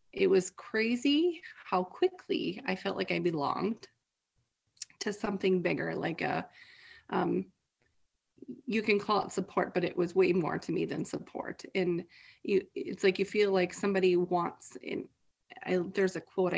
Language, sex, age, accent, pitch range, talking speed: English, female, 30-49, American, 180-210 Hz, 160 wpm